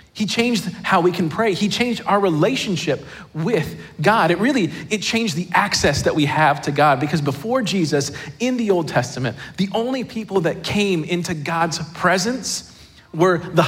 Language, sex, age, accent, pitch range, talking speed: English, male, 40-59, American, 145-190 Hz, 175 wpm